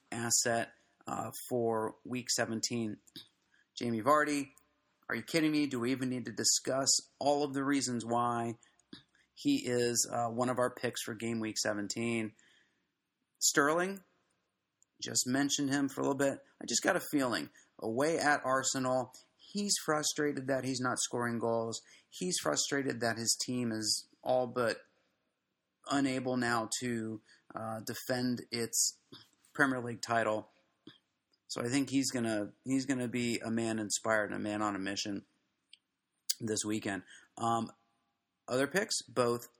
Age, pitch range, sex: 30-49, 115-140 Hz, male